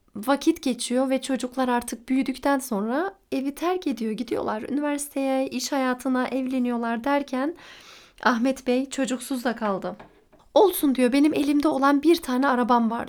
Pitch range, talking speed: 235-285 Hz, 140 wpm